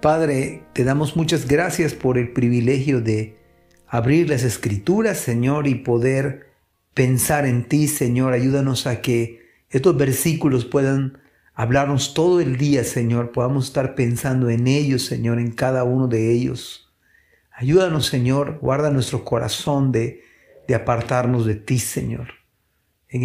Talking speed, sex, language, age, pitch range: 135 wpm, male, Spanish, 50-69, 120-160 Hz